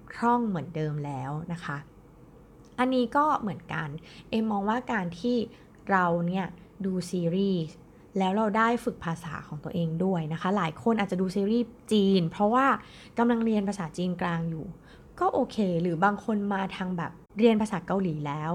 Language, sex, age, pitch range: Thai, female, 20-39, 165-225 Hz